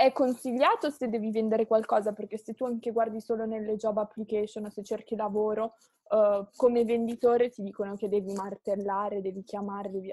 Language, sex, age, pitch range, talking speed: Italian, female, 20-39, 215-250 Hz, 180 wpm